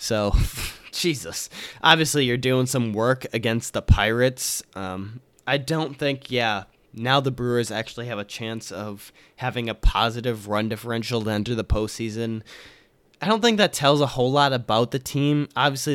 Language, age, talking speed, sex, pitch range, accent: English, 20-39, 165 wpm, male, 110-135 Hz, American